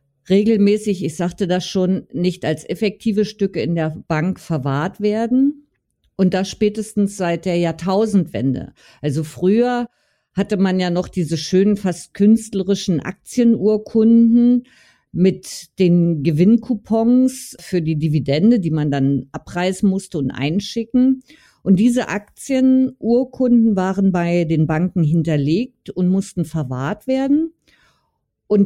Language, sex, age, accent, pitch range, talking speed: German, female, 50-69, German, 165-210 Hz, 120 wpm